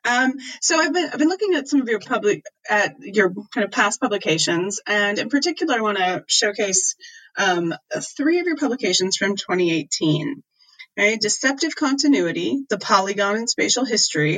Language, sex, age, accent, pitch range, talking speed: English, female, 30-49, American, 175-230 Hz, 165 wpm